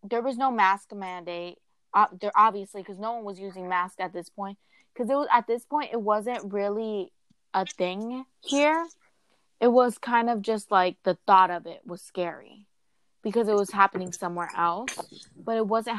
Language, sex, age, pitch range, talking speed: English, female, 20-39, 190-235 Hz, 175 wpm